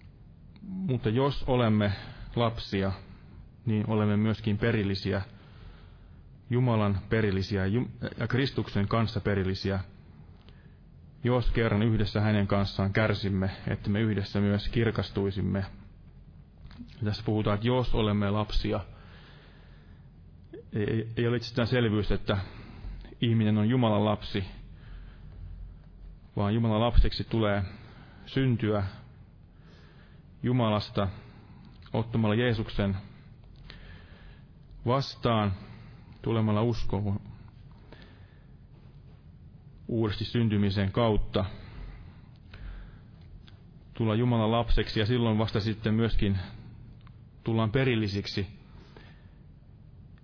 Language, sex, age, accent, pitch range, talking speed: Finnish, male, 30-49, native, 100-115 Hz, 75 wpm